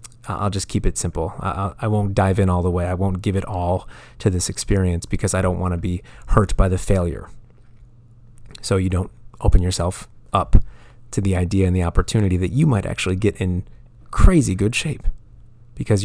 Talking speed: 195 wpm